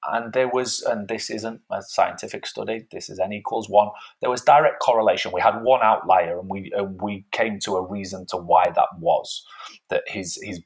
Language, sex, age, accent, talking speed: English, male, 30-49, British, 205 wpm